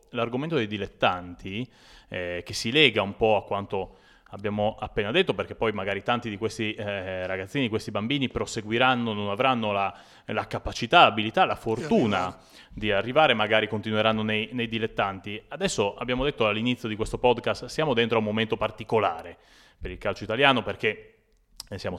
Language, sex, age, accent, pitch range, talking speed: Italian, male, 30-49, native, 105-120 Hz, 160 wpm